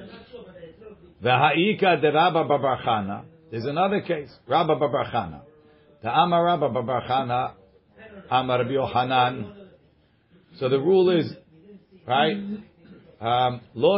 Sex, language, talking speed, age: male, English, 90 wpm, 50-69